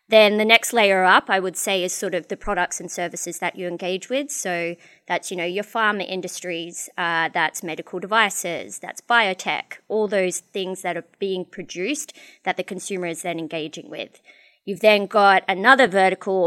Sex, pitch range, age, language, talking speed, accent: female, 170-205 Hz, 20-39, English, 185 wpm, Australian